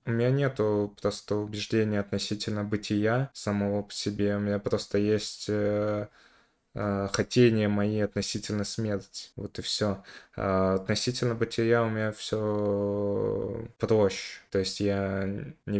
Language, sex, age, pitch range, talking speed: Russian, male, 20-39, 100-110 Hz, 130 wpm